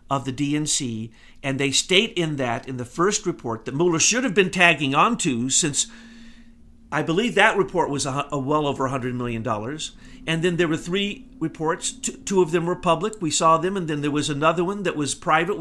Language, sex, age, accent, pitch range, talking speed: English, male, 50-69, American, 145-195 Hz, 210 wpm